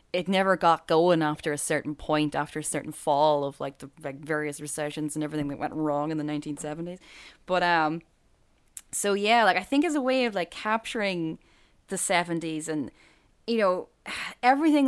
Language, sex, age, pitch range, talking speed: English, female, 10-29, 150-185 Hz, 185 wpm